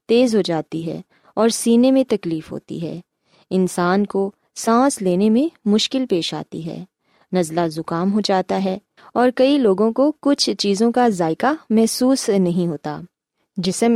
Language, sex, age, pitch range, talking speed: Urdu, female, 20-39, 185-255 Hz, 155 wpm